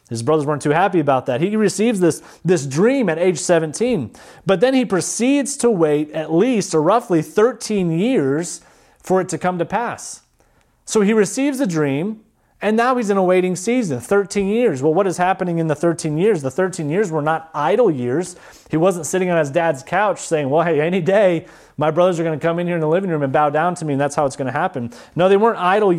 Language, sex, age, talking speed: English, male, 30-49, 230 wpm